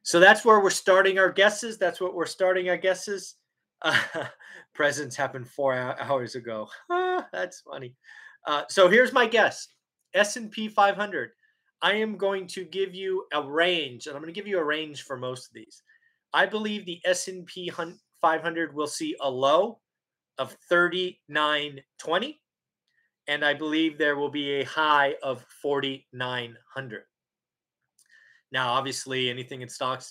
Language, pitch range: English, 140-190 Hz